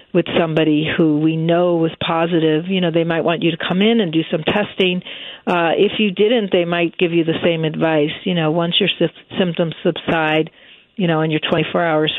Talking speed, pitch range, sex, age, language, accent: 210 wpm, 165-195 Hz, female, 50-69, English, American